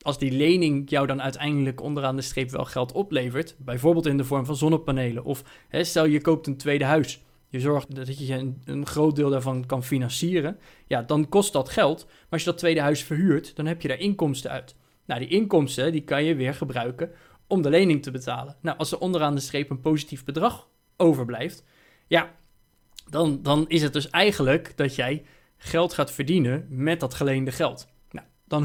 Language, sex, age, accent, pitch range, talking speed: Dutch, male, 20-39, Dutch, 135-165 Hz, 200 wpm